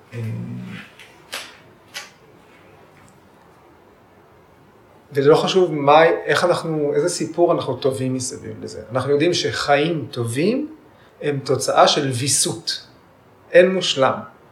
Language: Hebrew